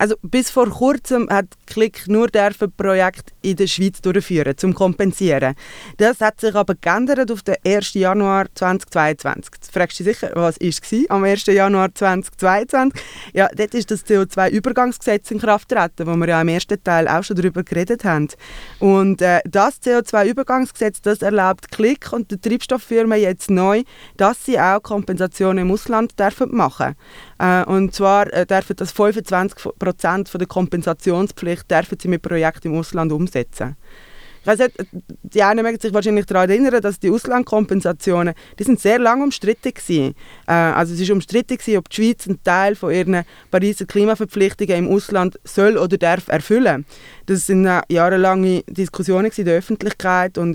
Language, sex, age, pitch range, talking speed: English, female, 20-39, 180-215 Hz, 160 wpm